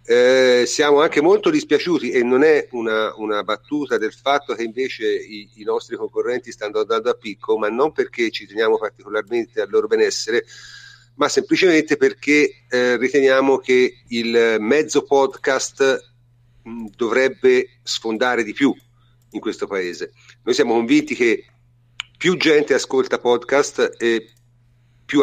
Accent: native